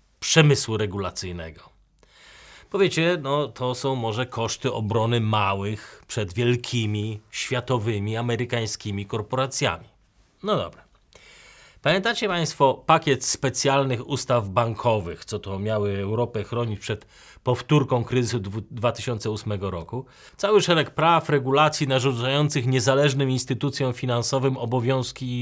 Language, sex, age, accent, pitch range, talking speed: Polish, male, 30-49, native, 105-135 Hz, 100 wpm